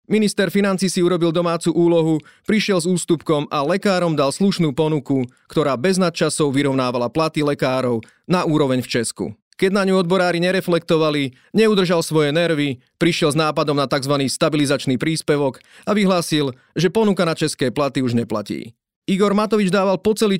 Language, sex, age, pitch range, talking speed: Slovak, male, 30-49, 145-185 Hz, 155 wpm